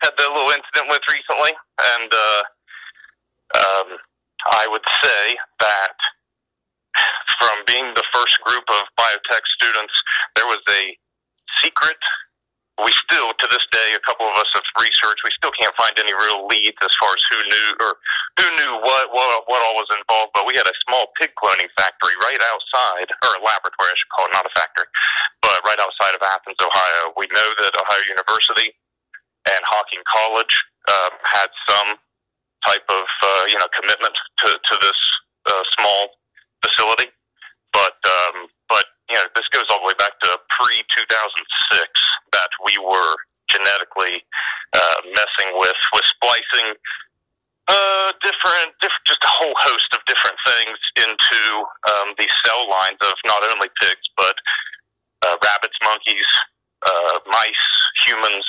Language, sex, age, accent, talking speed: English, male, 40-59, American, 160 wpm